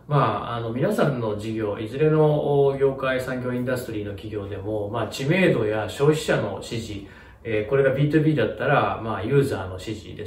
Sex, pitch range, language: male, 110-155 Hz, Japanese